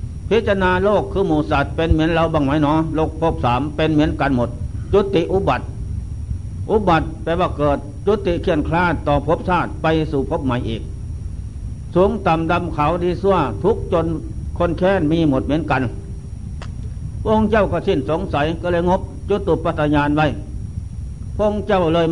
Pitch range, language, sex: 105-170 Hz, Thai, male